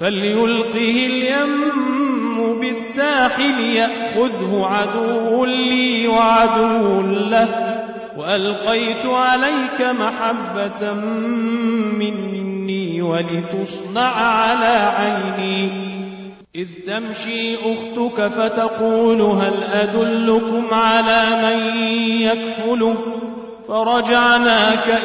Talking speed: 60 wpm